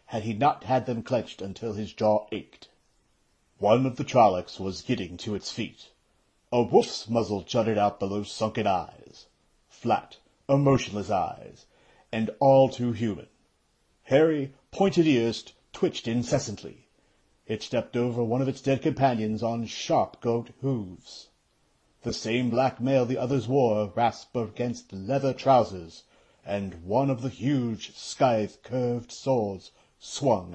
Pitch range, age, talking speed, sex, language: 105-130 Hz, 60-79, 140 wpm, male, English